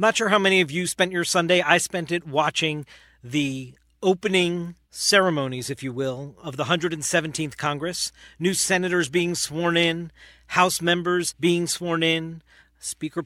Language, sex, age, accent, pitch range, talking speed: English, male, 40-59, American, 155-205 Hz, 155 wpm